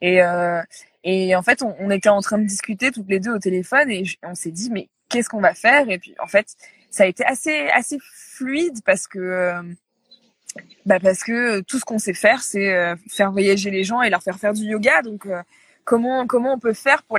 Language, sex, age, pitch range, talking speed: French, female, 20-39, 190-245 Hz, 235 wpm